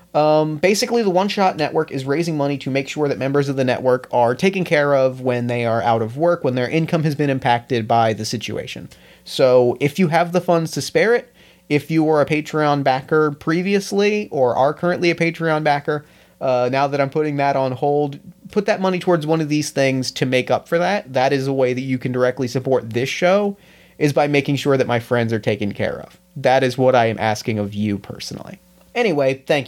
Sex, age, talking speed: male, 30-49, 225 wpm